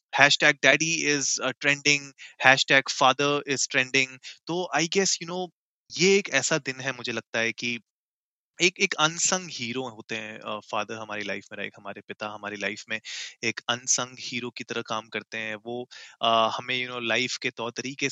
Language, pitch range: Hindi, 110-135 Hz